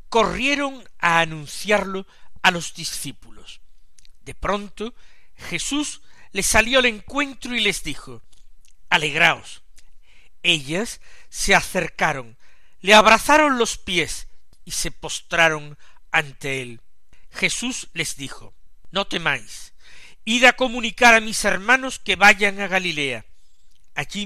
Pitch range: 145-215 Hz